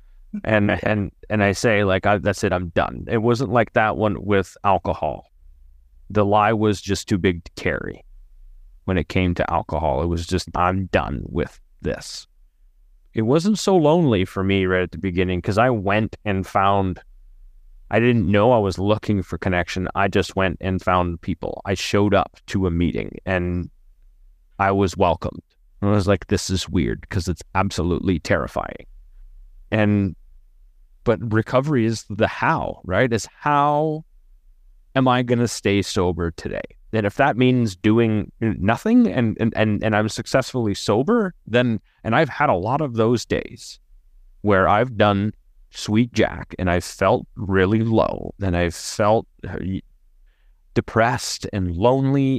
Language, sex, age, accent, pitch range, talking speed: English, male, 30-49, American, 90-110 Hz, 160 wpm